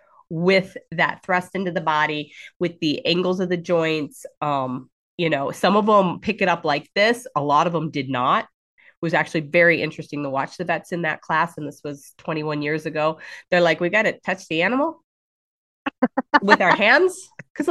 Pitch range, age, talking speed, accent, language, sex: 165-220 Hz, 30-49, 200 wpm, American, English, female